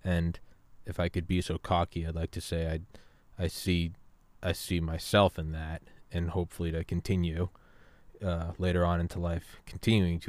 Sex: male